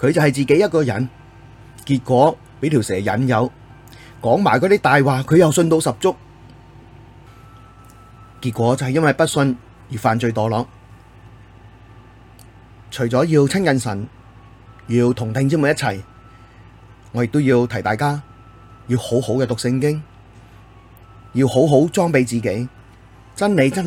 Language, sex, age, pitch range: Chinese, male, 30-49, 115-140 Hz